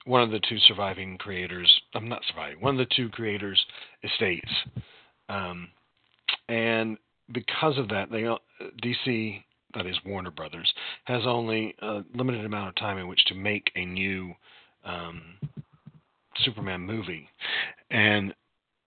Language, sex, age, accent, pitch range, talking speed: English, male, 40-59, American, 95-120 Hz, 145 wpm